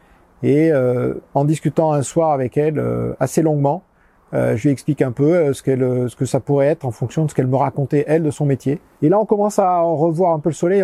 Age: 40-59